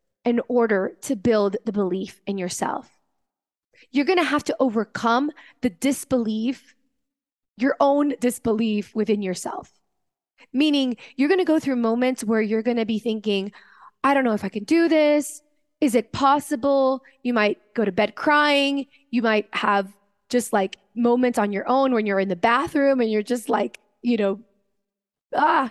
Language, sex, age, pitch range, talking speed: English, female, 20-39, 205-265 Hz, 170 wpm